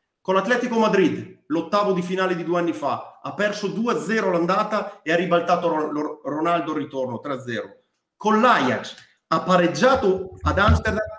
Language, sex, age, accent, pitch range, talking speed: Italian, male, 40-59, native, 170-240 Hz, 140 wpm